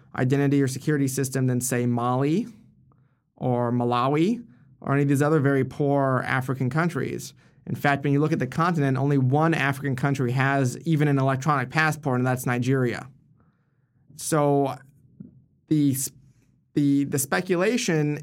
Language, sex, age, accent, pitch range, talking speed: English, male, 20-39, American, 125-145 Hz, 140 wpm